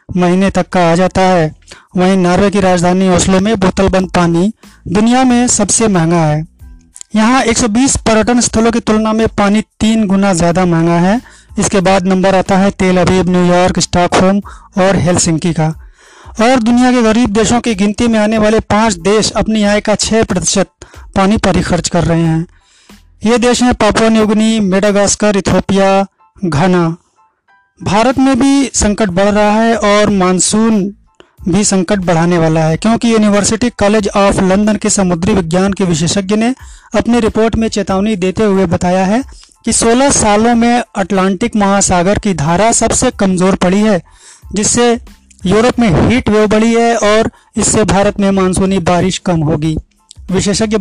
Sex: male